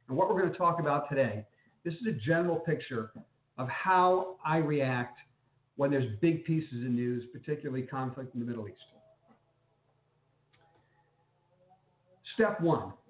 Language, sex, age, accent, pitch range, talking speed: English, male, 50-69, American, 135-165 Hz, 140 wpm